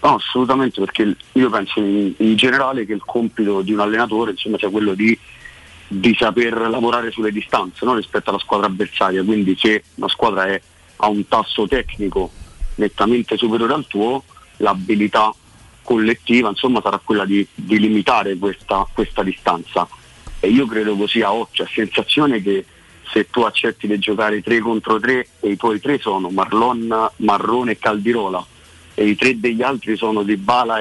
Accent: native